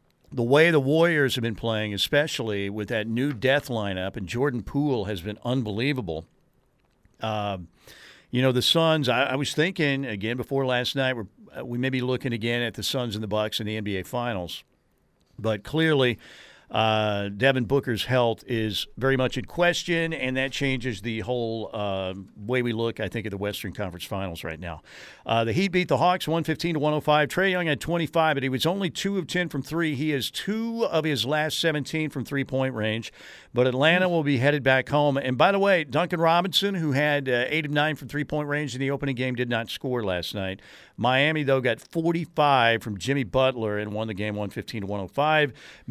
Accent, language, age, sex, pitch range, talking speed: American, English, 50-69, male, 115-150 Hz, 195 wpm